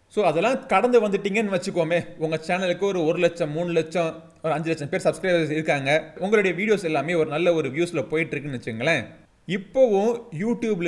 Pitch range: 150-200 Hz